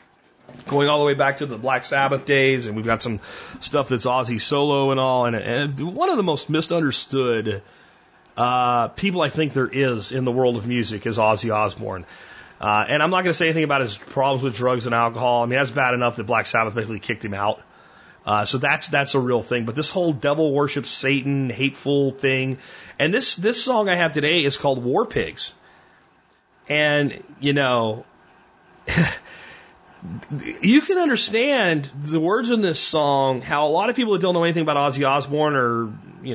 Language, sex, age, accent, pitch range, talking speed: German, male, 30-49, American, 125-165 Hz, 195 wpm